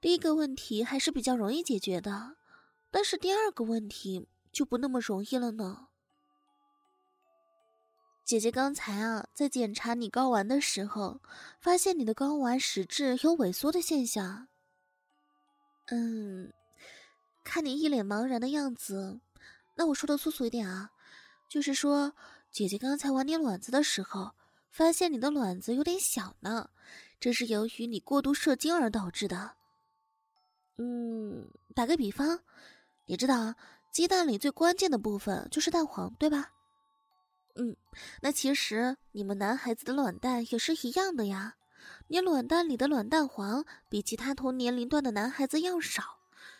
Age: 20-39